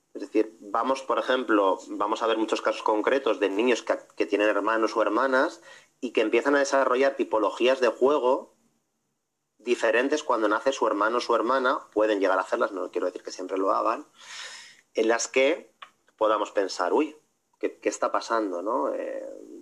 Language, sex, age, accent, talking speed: Spanish, male, 30-49, Spanish, 170 wpm